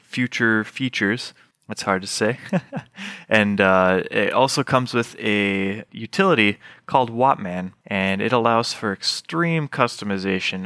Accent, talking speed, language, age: American, 125 wpm, English, 20-39